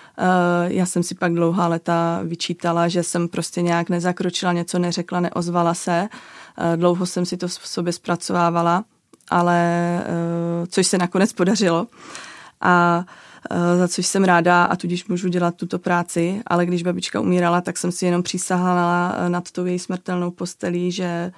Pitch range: 175-185 Hz